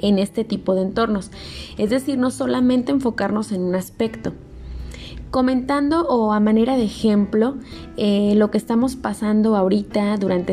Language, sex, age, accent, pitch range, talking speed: Spanish, female, 20-39, Mexican, 195-245 Hz, 150 wpm